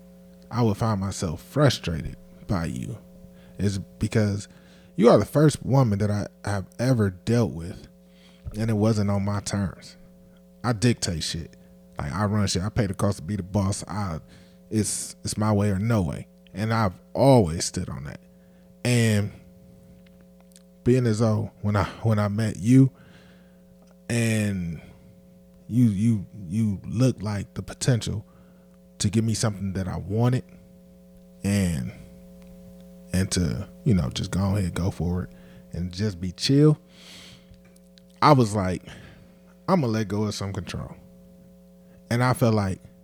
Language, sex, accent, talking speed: English, male, American, 150 wpm